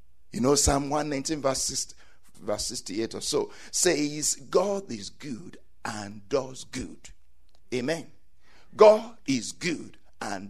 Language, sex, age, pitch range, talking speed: English, male, 60-79, 135-215 Hz, 115 wpm